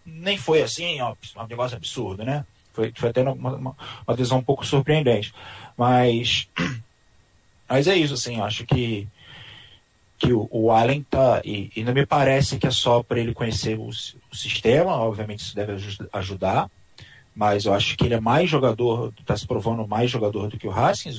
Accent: Brazilian